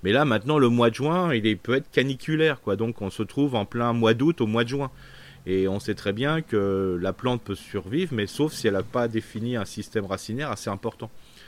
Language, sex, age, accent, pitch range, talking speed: French, male, 30-49, French, 100-130 Hz, 250 wpm